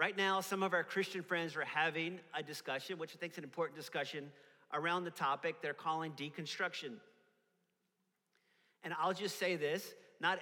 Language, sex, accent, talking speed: English, male, American, 175 wpm